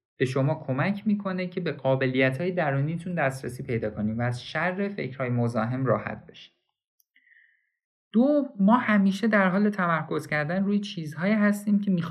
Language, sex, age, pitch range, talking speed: Persian, male, 50-69, 130-185 Hz, 155 wpm